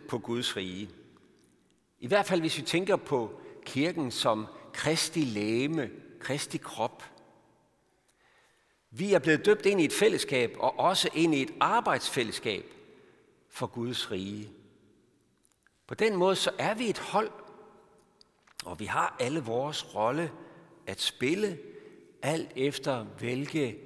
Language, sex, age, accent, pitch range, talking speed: Danish, male, 60-79, native, 125-185 Hz, 130 wpm